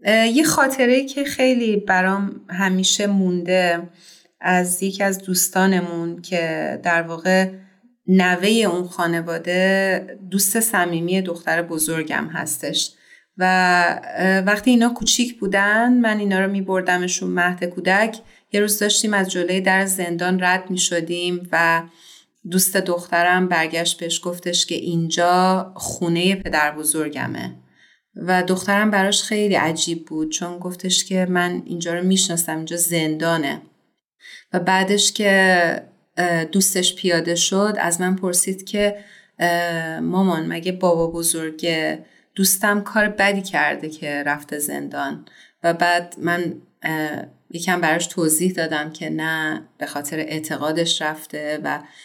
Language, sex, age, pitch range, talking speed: Persian, female, 30-49, 170-195 Hz, 120 wpm